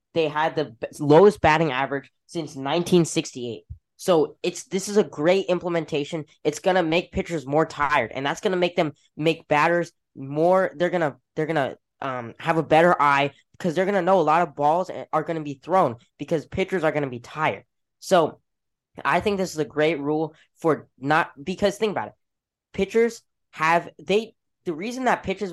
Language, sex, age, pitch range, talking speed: English, female, 10-29, 150-190 Hz, 180 wpm